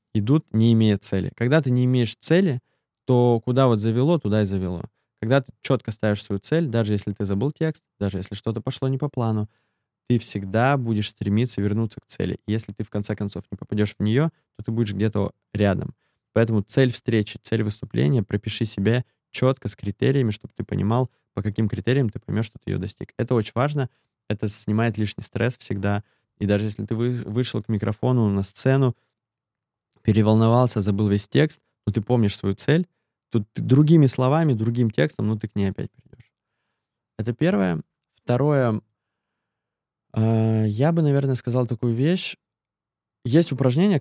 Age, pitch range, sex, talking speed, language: 20-39, 105-130 Hz, male, 170 wpm, Russian